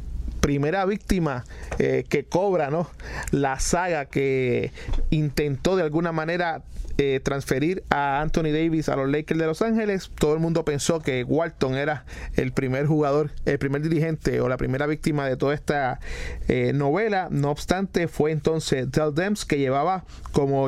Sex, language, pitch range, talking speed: male, English, 135-165 Hz, 155 wpm